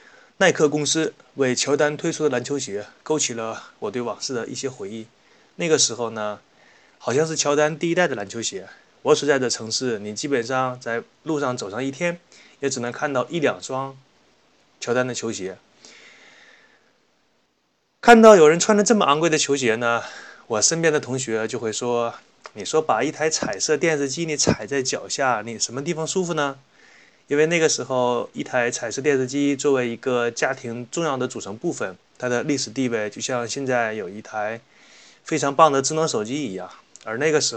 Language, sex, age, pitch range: Chinese, male, 20-39, 120-150 Hz